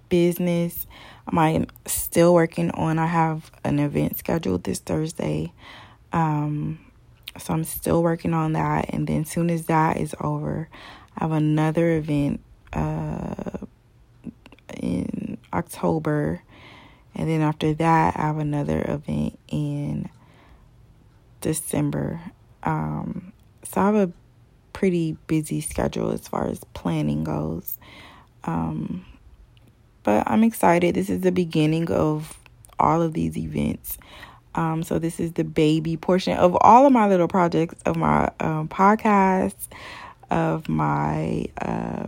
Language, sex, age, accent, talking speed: English, female, 20-39, American, 130 wpm